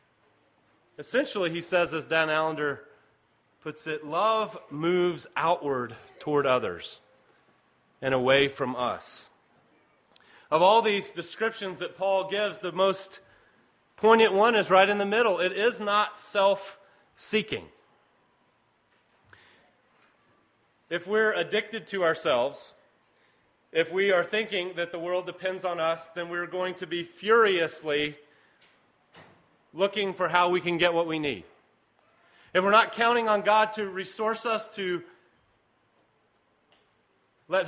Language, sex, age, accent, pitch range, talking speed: English, male, 30-49, American, 170-210 Hz, 125 wpm